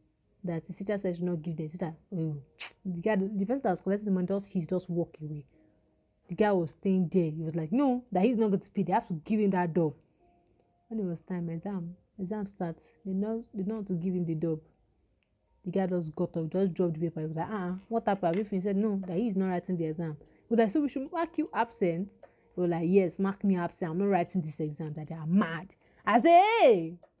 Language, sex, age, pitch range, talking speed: English, female, 30-49, 170-230 Hz, 255 wpm